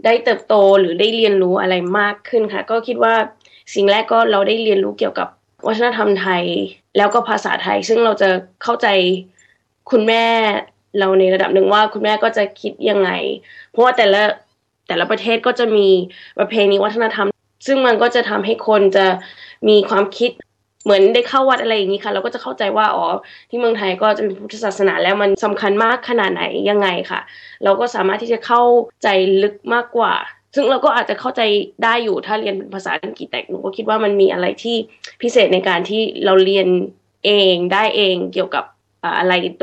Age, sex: 20-39, female